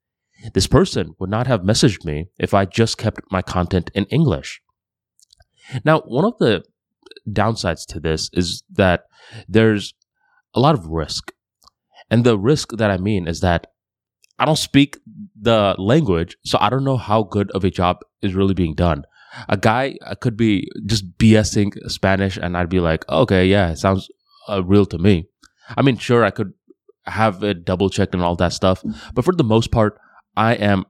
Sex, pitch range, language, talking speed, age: male, 95-115 Hz, English, 180 wpm, 20-39